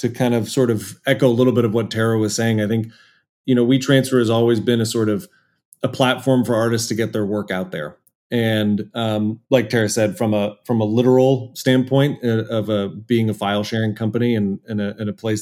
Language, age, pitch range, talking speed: English, 30-49, 110-120 Hz, 240 wpm